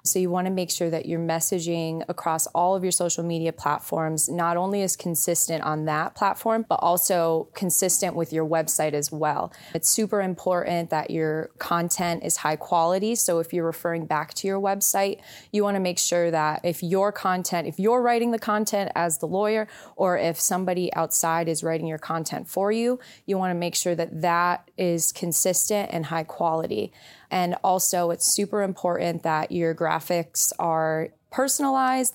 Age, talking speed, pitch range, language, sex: 20-39, 180 wpm, 160-185 Hz, English, female